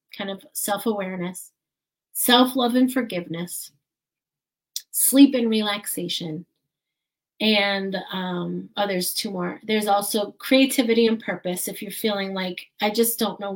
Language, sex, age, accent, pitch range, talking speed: English, female, 30-49, American, 190-235 Hz, 135 wpm